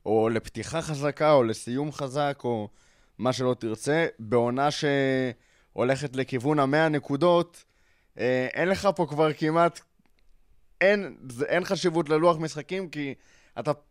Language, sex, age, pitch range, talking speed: Hebrew, male, 20-39, 120-150 Hz, 115 wpm